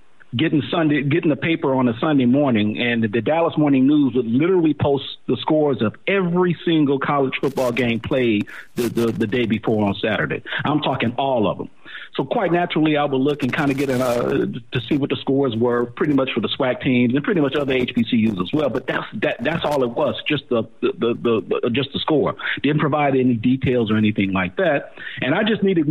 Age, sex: 50-69, male